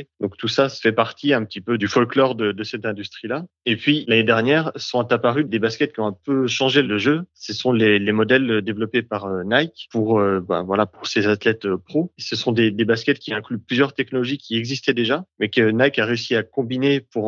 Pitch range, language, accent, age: 105-130 Hz, French, French, 30-49